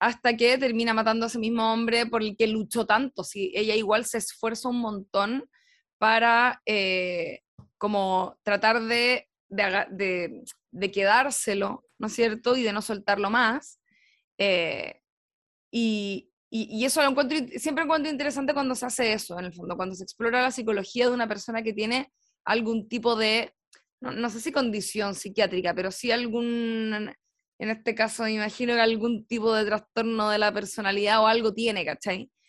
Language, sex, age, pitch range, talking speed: Spanish, female, 20-39, 200-240 Hz, 175 wpm